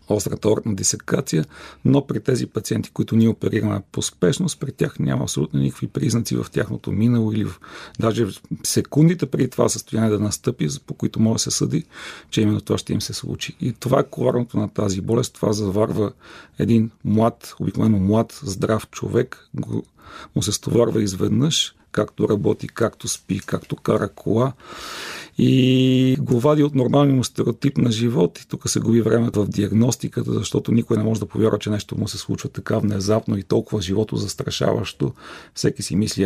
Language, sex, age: Bulgarian, male, 40-59